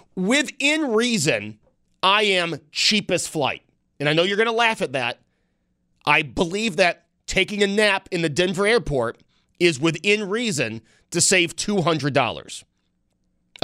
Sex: male